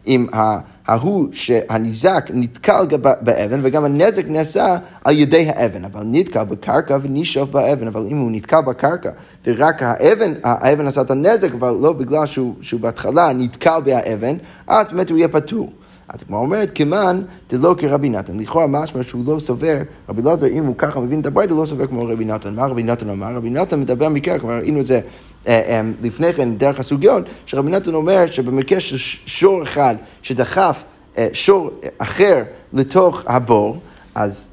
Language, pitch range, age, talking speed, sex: Hebrew, 125-165 Hz, 30-49, 170 wpm, male